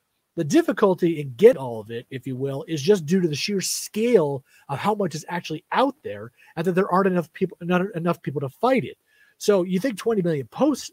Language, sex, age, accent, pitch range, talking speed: English, male, 30-49, American, 145-190 Hz, 230 wpm